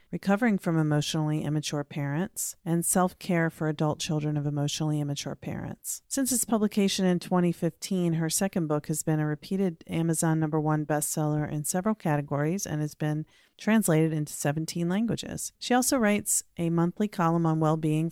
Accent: American